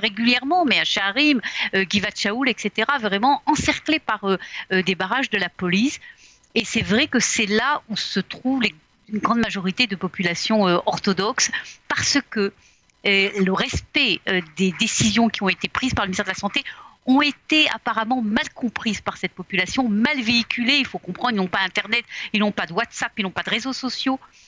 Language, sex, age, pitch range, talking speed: Russian, female, 40-59, 185-235 Hz, 195 wpm